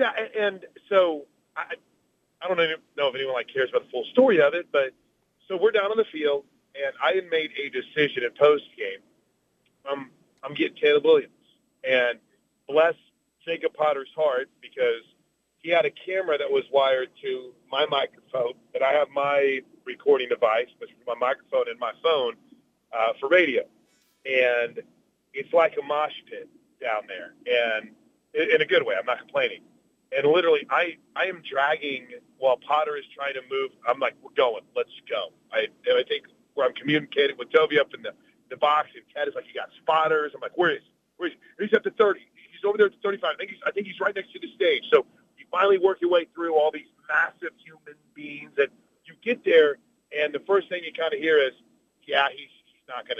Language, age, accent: English, 40-59, American